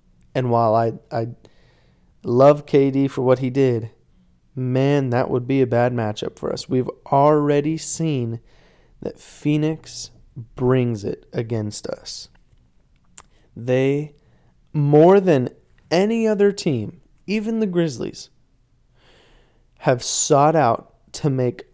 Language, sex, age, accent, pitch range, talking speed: English, male, 20-39, American, 120-155 Hz, 115 wpm